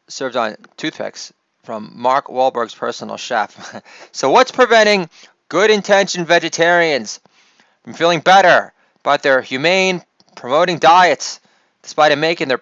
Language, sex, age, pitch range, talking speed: English, male, 30-49, 135-170 Hz, 120 wpm